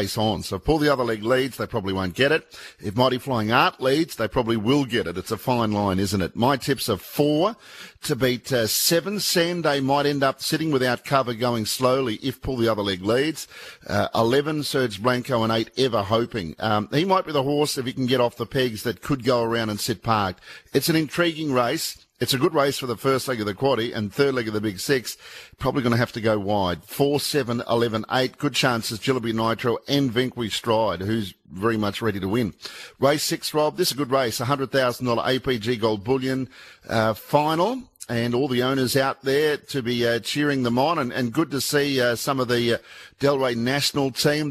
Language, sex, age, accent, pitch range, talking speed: English, male, 50-69, Australian, 115-140 Hz, 220 wpm